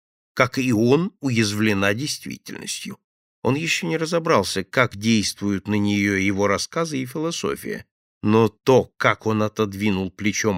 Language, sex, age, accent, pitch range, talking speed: Russian, male, 50-69, native, 100-145 Hz, 130 wpm